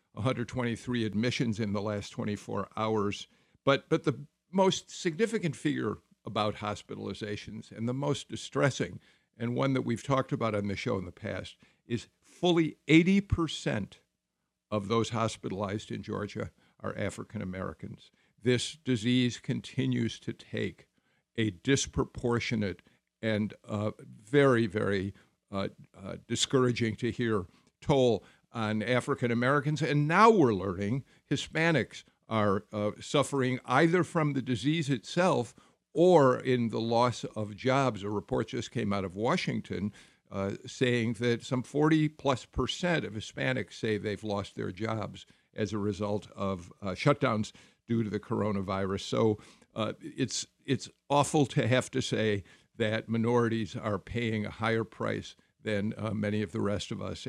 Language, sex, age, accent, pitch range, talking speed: English, male, 50-69, American, 105-130 Hz, 140 wpm